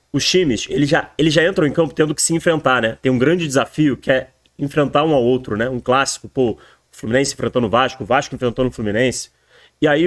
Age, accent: 30-49, Brazilian